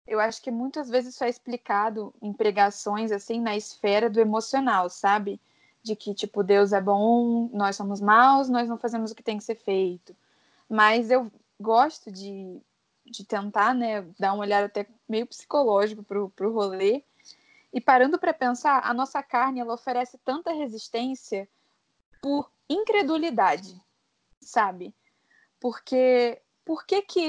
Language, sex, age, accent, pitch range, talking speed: Portuguese, female, 10-29, Brazilian, 210-270 Hz, 150 wpm